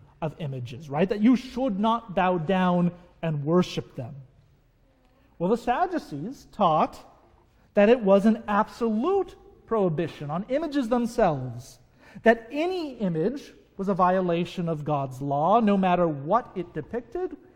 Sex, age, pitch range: male, 40-59, 160-230 Hz